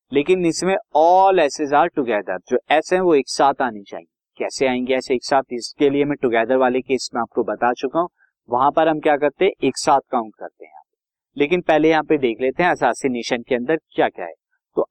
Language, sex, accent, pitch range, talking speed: Hindi, male, native, 125-170 Hz, 225 wpm